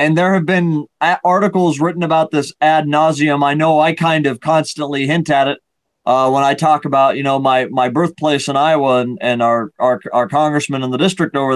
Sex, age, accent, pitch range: male, 30-49, American, 135-170 Hz